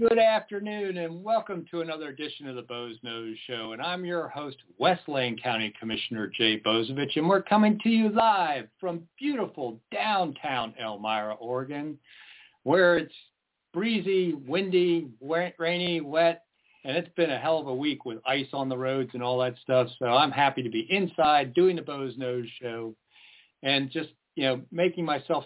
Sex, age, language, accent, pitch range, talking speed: male, 50-69, English, American, 120-165 Hz, 170 wpm